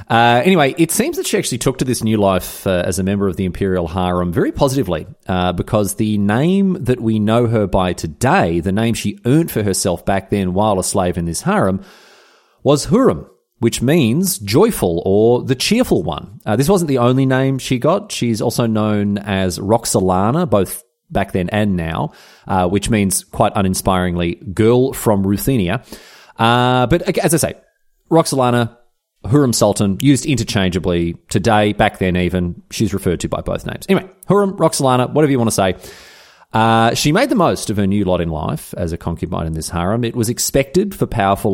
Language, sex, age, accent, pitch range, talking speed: English, male, 30-49, Australian, 95-135 Hz, 190 wpm